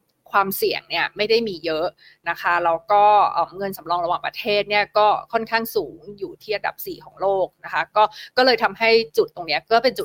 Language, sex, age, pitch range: Thai, female, 20-39, 190-250 Hz